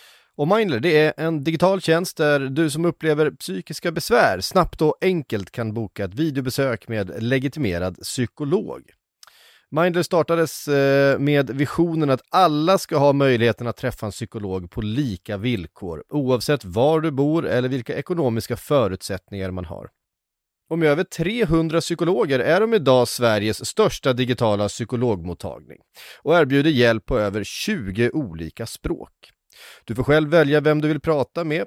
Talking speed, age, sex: 150 wpm, 30-49, male